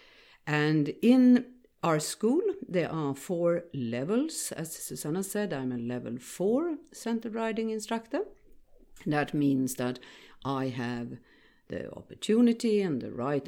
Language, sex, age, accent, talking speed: German, female, 50-69, Swedish, 125 wpm